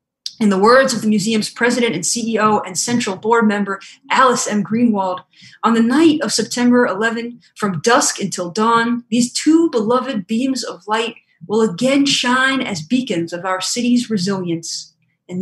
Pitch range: 185-245 Hz